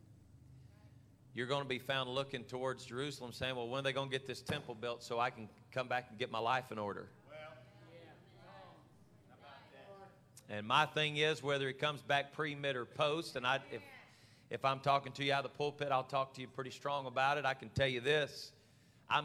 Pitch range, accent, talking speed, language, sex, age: 125-155 Hz, American, 210 wpm, English, male, 40-59